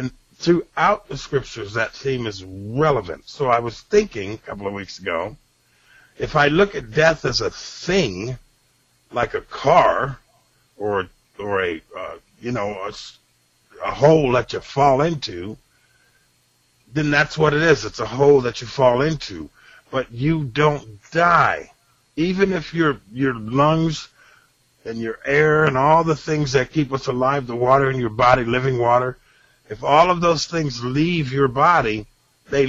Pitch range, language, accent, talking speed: 120-150 Hz, English, American, 160 wpm